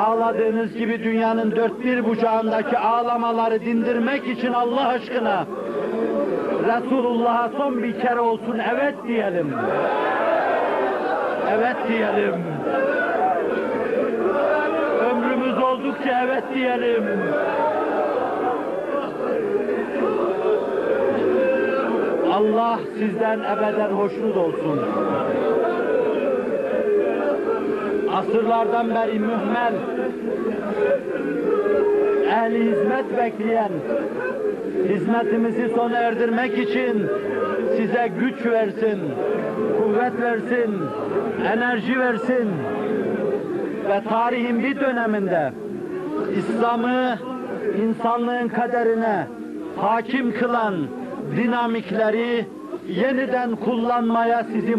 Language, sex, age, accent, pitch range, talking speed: Turkish, male, 60-79, native, 225-255 Hz, 65 wpm